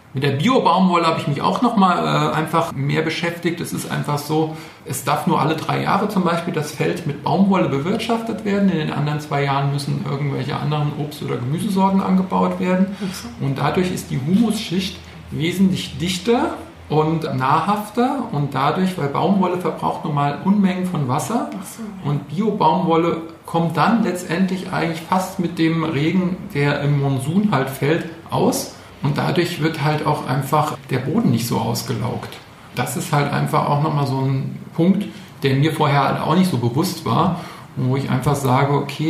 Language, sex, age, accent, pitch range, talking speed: German, male, 50-69, German, 140-180 Hz, 170 wpm